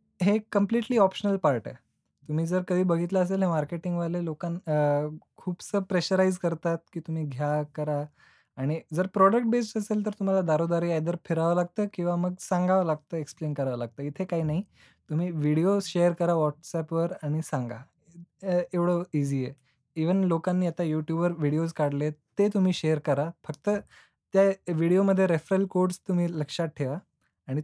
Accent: native